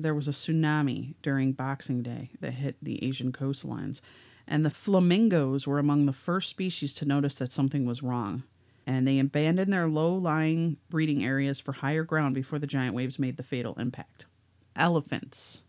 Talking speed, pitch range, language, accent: 170 wpm, 135-170 Hz, English, American